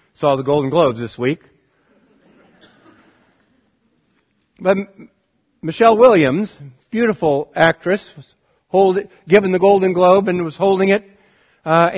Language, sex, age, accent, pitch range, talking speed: English, male, 50-69, American, 160-205 Hz, 100 wpm